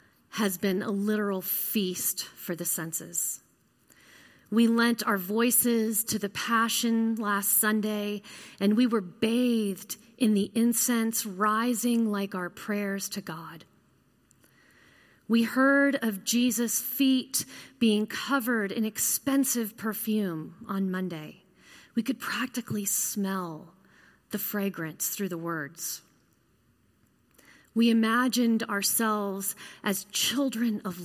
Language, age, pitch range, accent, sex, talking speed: English, 30-49, 190-230 Hz, American, female, 110 wpm